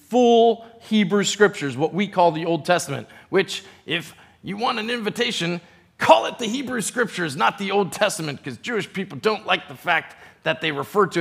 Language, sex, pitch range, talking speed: English, male, 150-215 Hz, 185 wpm